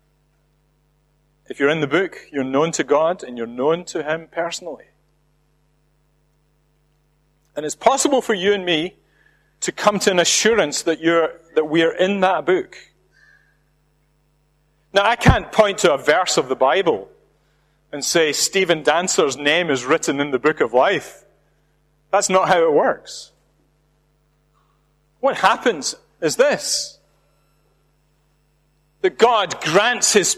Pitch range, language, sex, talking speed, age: 150-235 Hz, English, male, 135 wpm, 40-59